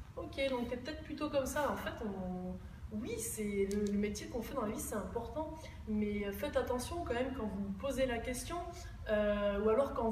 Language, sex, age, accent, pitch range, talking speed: French, female, 20-39, French, 205-255 Hz, 210 wpm